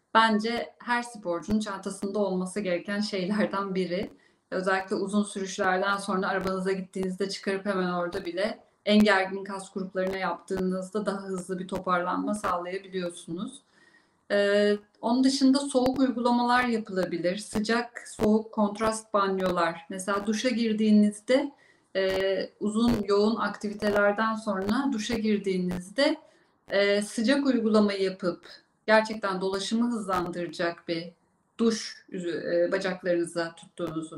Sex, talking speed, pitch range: female, 105 wpm, 190-225 Hz